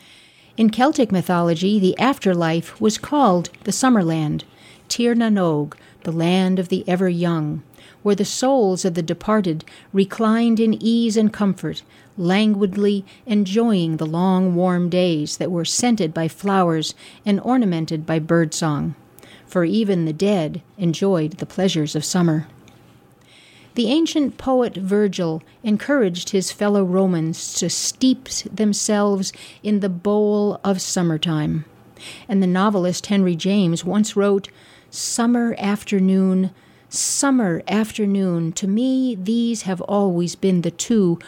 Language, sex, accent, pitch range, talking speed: English, female, American, 170-210 Hz, 125 wpm